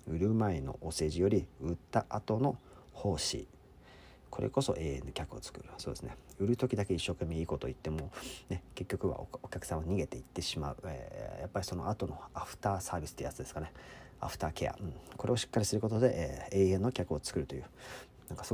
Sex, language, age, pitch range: male, Japanese, 40-59, 80-105 Hz